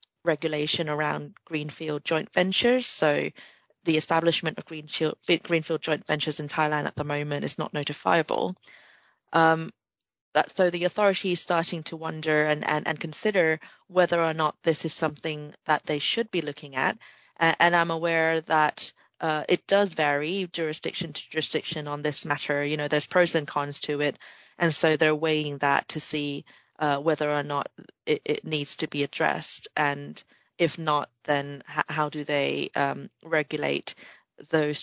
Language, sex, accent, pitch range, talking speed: English, female, British, 150-170 Hz, 165 wpm